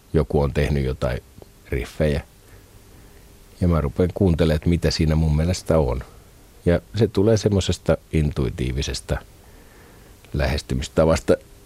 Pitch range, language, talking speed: 80-100 Hz, Finnish, 110 wpm